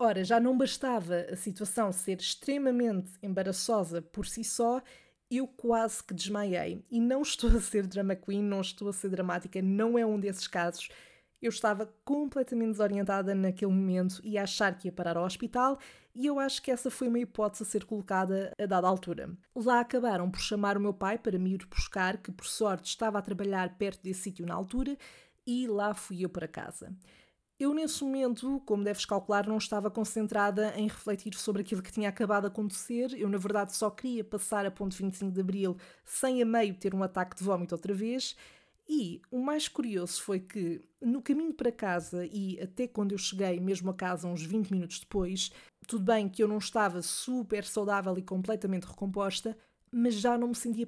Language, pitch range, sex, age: Portuguese, 190-230 Hz, female, 20-39